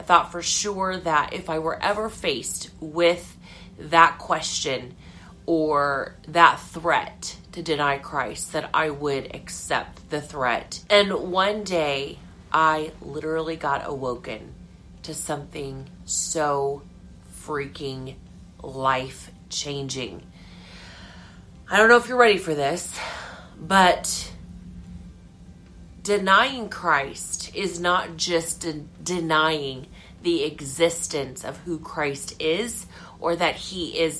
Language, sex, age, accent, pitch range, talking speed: English, female, 30-49, American, 135-190 Hz, 105 wpm